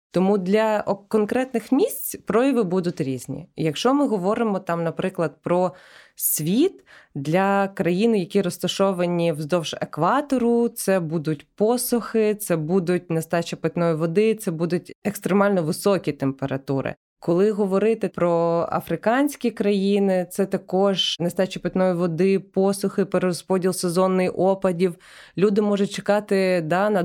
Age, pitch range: 20-39, 170-205 Hz